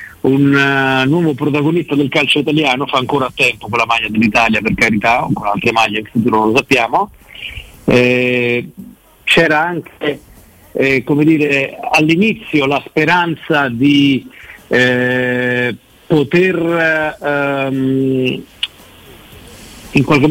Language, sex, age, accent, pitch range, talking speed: Italian, male, 50-69, native, 125-155 Hz, 115 wpm